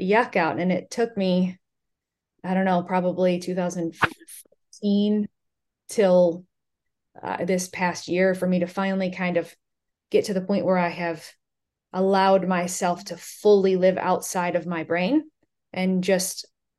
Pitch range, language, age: 170-205 Hz, English, 20-39